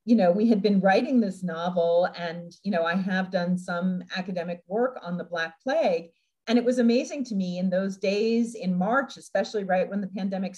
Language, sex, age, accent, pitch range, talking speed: English, female, 40-59, American, 205-250 Hz, 210 wpm